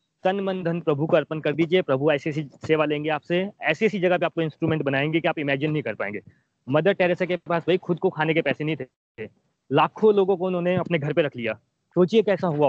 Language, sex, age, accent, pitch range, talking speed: Hindi, male, 30-49, native, 155-190 Hz, 240 wpm